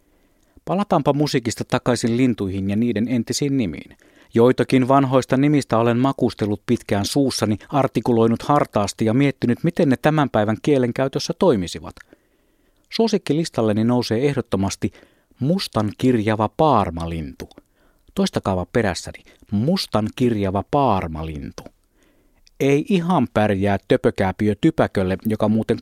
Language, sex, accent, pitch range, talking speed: Finnish, male, native, 110-140 Hz, 95 wpm